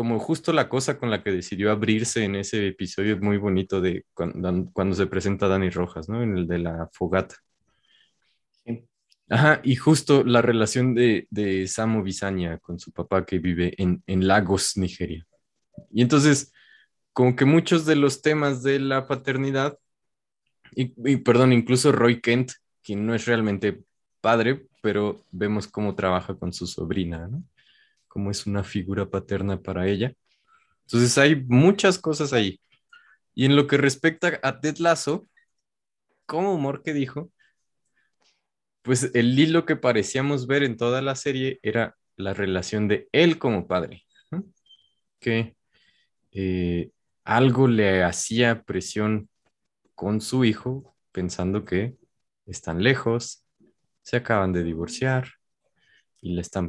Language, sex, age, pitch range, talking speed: Spanish, male, 20-39, 95-135 Hz, 145 wpm